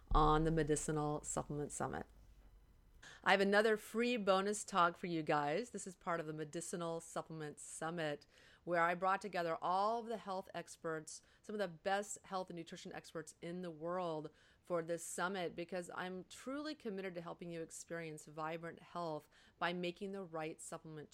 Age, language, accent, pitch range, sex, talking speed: 30-49, English, American, 160-195 Hz, female, 165 wpm